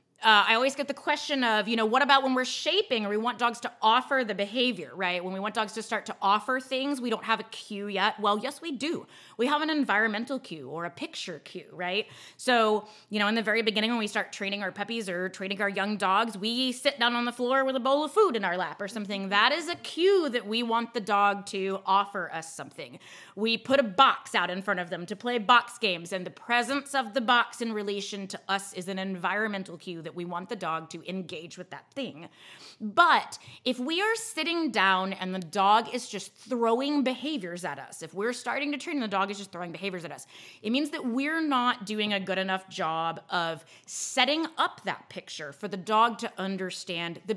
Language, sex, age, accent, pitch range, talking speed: English, female, 20-39, American, 190-245 Hz, 235 wpm